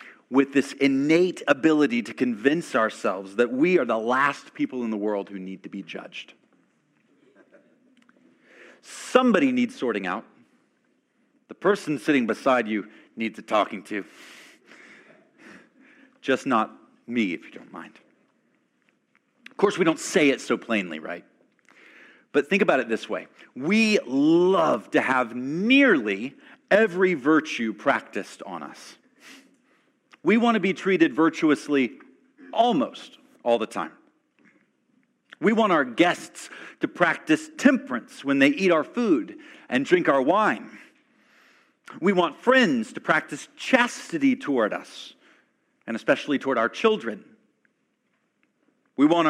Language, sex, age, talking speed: English, male, 40-59, 130 wpm